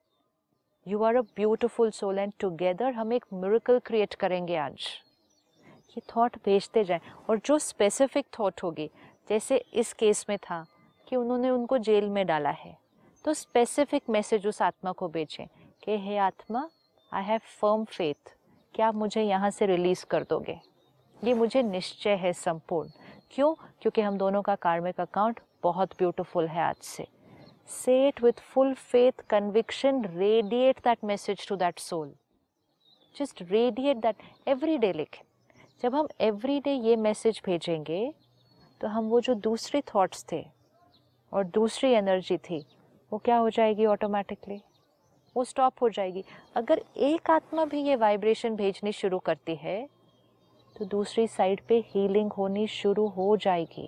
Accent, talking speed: native, 150 wpm